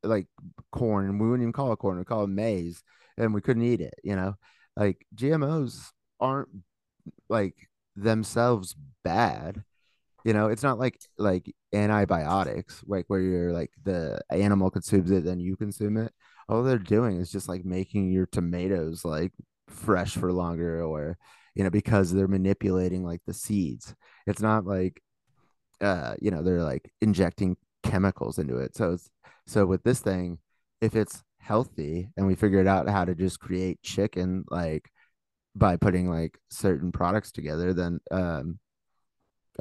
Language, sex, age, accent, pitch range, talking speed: English, male, 30-49, American, 90-110 Hz, 160 wpm